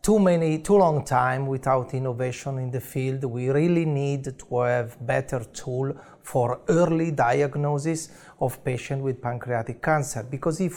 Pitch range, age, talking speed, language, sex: 125-165 Hz, 40-59, 150 wpm, English, male